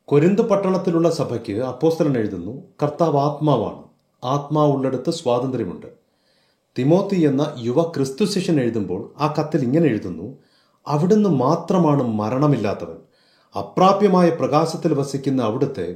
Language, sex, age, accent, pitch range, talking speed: Malayalam, male, 30-49, native, 110-155 Hz, 90 wpm